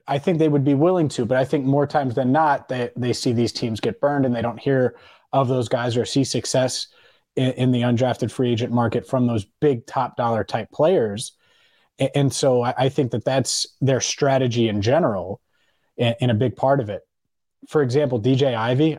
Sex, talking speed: male, 210 wpm